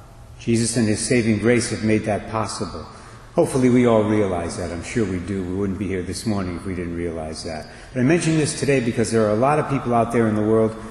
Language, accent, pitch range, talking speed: English, American, 105-120 Hz, 255 wpm